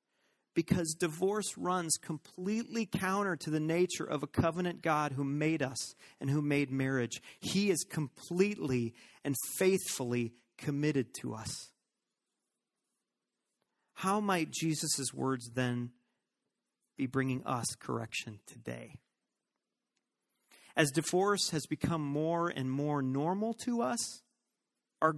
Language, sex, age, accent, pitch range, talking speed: English, male, 40-59, American, 130-180 Hz, 115 wpm